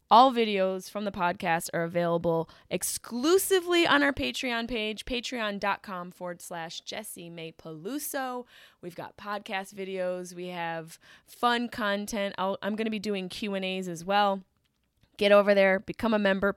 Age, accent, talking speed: 20-39, American, 140 wpm